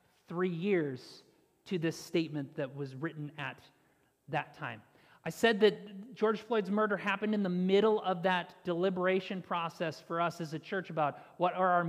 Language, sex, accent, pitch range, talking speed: English, male, American, 165-215 Hz, 170 wpm